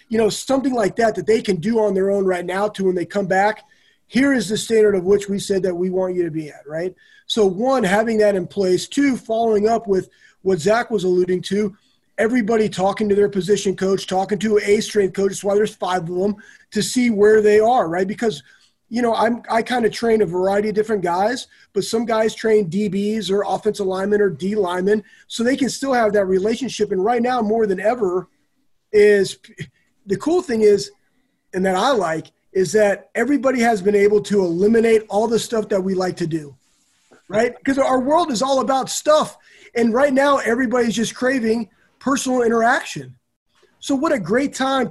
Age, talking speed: 30-49, 205 wpm